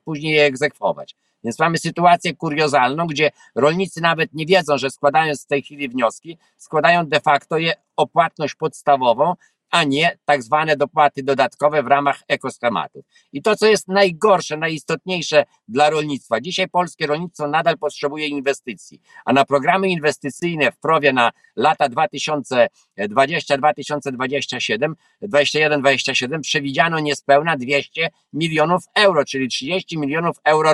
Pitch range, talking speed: 145-175 Hz, 130 wpm